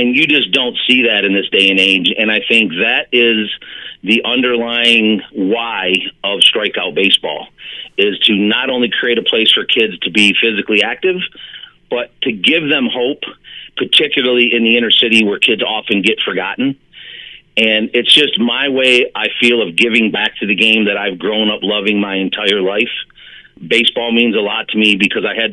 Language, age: English, 40-59